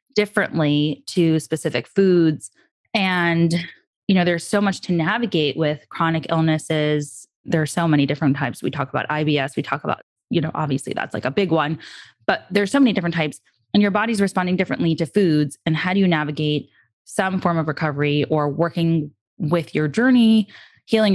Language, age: English, 20-39